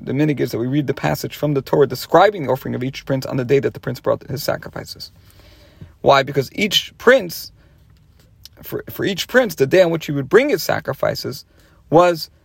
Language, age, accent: English, 40-59, American